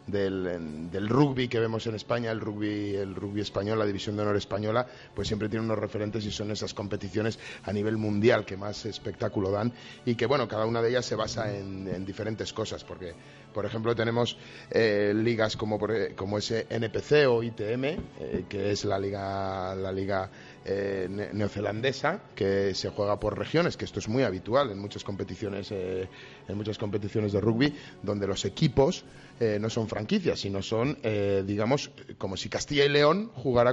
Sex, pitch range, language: male, 100-115 Hz, Spanish